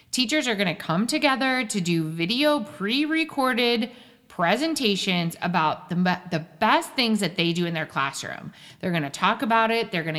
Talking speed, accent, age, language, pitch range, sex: 175 wpm, American, 30-49, English, 175-255 Hz, female